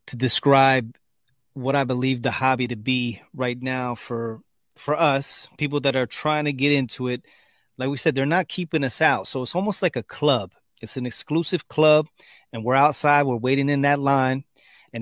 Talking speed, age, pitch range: 195 wpm, 30-49, 125-150 Hz